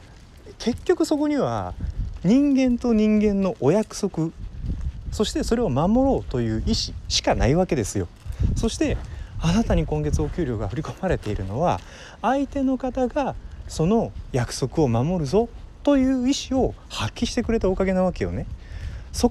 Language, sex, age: Japanese, male, 30-49